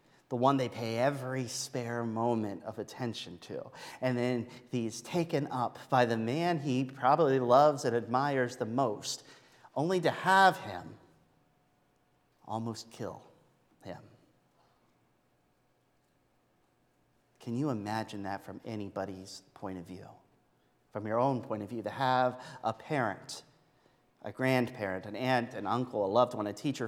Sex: male